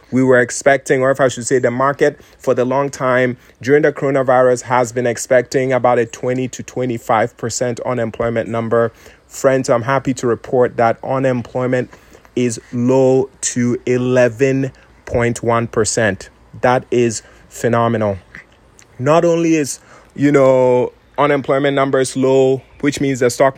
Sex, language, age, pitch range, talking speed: male, English, 30-49, 120-140 Hz, 140 wpm